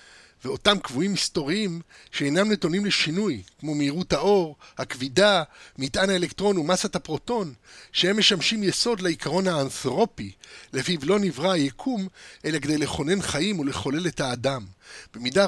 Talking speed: 120 wpm